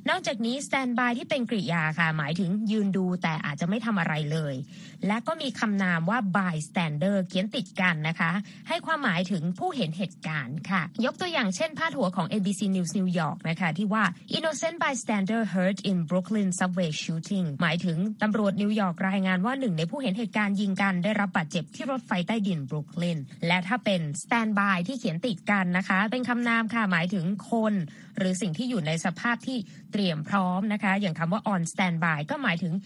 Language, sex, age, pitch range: Thai, female, 20-39, 180-220 Hz